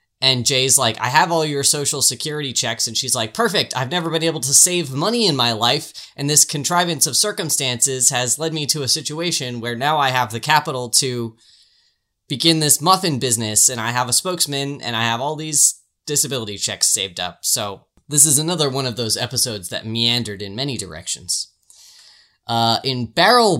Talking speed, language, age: 195 wpm, English, 10-29